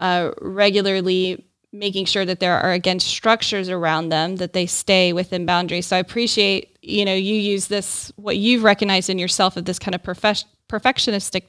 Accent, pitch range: American, 180-205 Hz